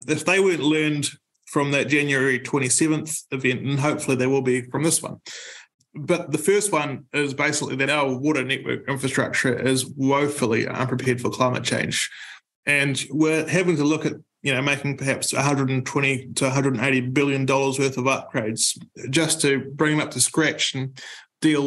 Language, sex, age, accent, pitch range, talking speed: English, male, 20-39, Australian, 130-150 Hz, 165 wpm